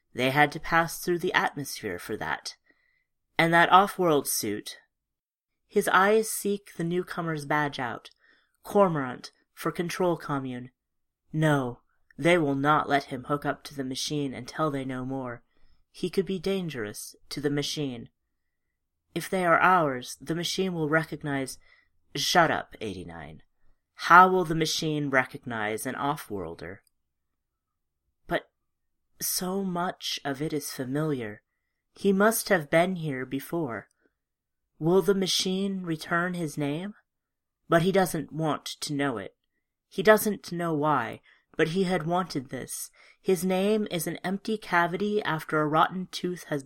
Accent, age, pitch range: American, 30-49, 135-180 Hz